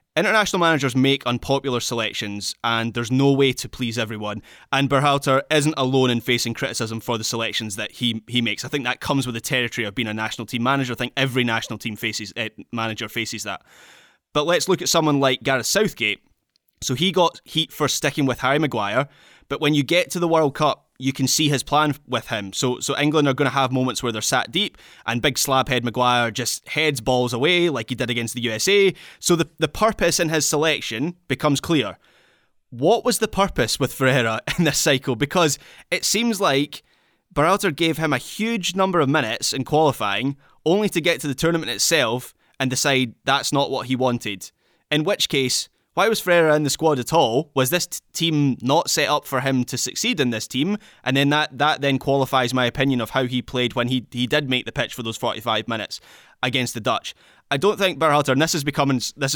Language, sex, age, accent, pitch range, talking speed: English, male, 20-39, British, 120-150 Hz, 215 wpm